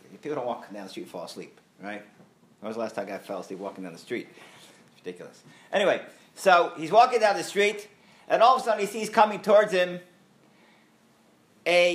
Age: 50-69